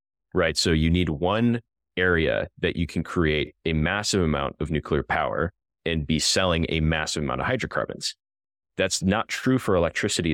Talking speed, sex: 170 wpm, male